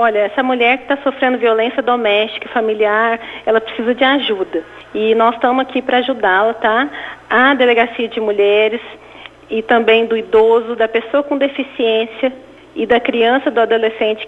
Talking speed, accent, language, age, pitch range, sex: 155 wpm, Brazilian, Portuguese, 40-59, 220-260 Hz, female